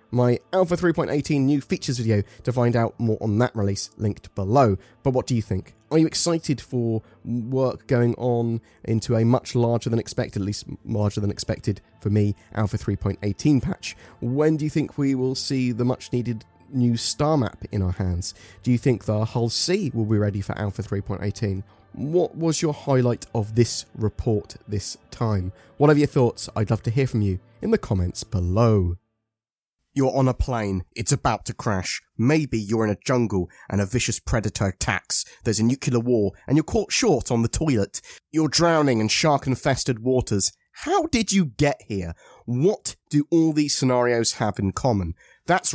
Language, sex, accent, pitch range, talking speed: English, male, British, 110-160 Hz, 185 wpm